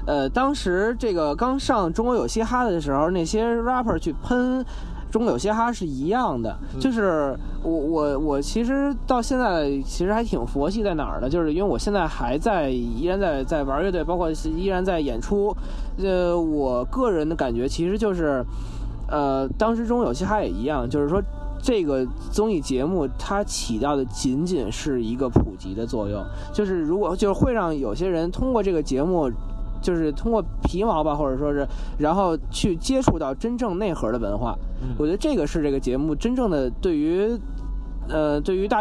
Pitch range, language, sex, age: 130-205 Hz, Chinese, male, 20-39